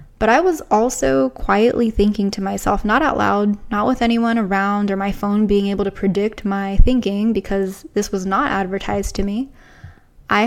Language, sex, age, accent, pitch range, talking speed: English, female, 10-29, American, 200-230 Hz, 185 wpm